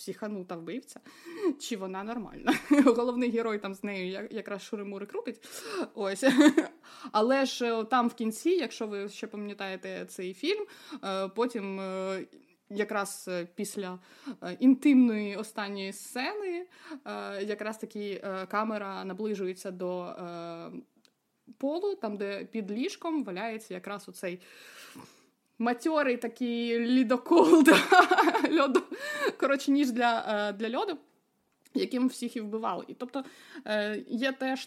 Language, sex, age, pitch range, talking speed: Ukrainian, female, 20-39, 200-270 Hz, 105 wpm